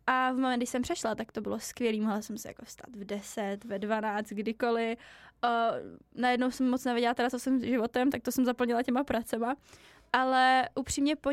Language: Czech